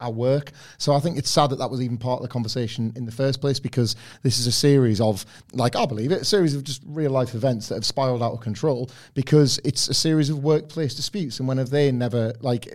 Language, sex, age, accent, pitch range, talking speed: English, male, 40-59, British, 120-150 Hz, 255 wpm